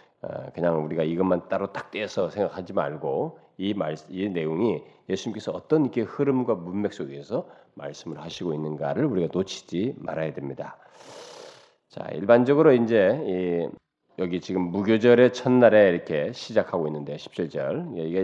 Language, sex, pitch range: Korean, male, 80-130 Hz